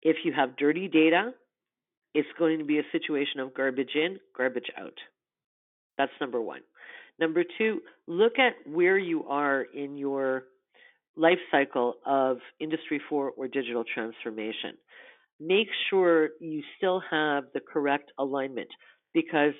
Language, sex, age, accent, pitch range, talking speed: English, female, 50-69, American, 135-165 Hz, 140 wpm